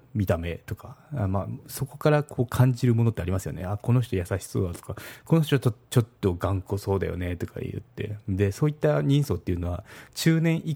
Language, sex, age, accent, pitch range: Japanese, male, 40-59, native, 95-125 Hz